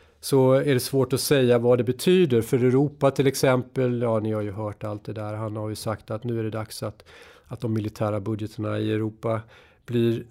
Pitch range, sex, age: 110-140 Hz, male, 40-59